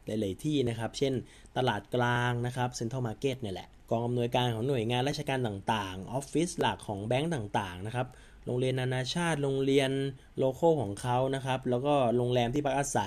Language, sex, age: Thai, male, 20-39